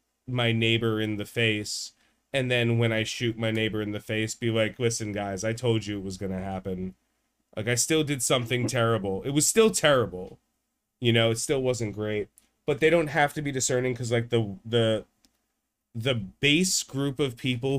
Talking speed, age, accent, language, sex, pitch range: 195 wpm, 30-49, American, English, male, 105-120 Hz